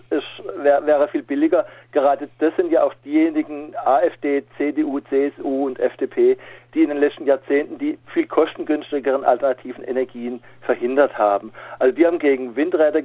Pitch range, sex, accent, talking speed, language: 130-190 Hz, male, German, 145 wpm, German